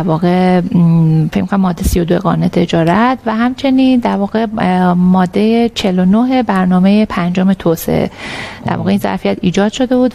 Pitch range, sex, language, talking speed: 185-245 Hz, female, Persian, 135 wpm